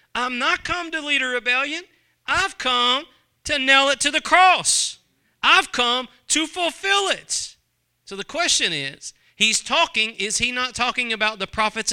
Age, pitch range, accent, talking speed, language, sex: 40-59, 175-245 Hz, American, 165 wpm, English, male